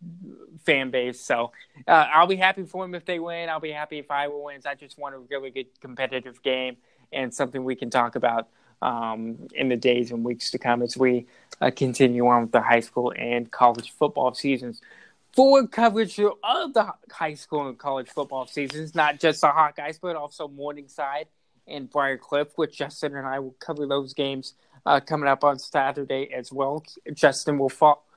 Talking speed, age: 190 wpm, 20-39